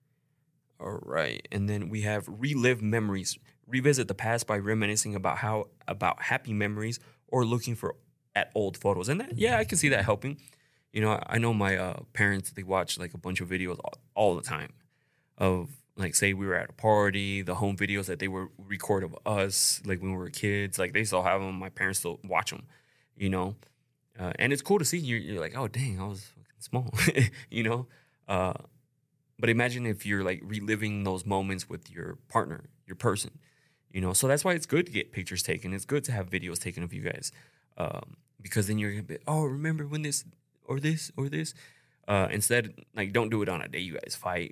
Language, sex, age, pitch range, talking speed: English, male, 20-39, 100-135 Hz, 220 wpm